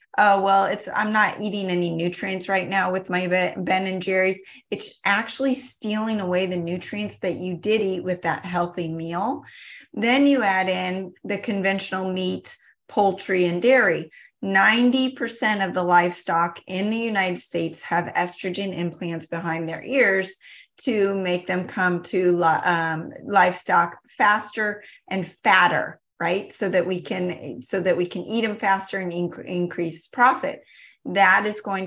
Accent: American